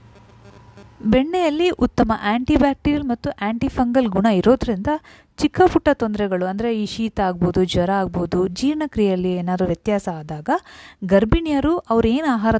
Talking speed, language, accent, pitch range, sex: 115 wpm, Kannada, native, 180-270 Hz, female